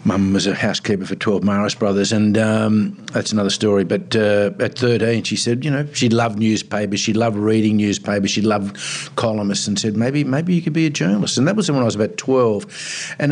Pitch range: 95-120 Hz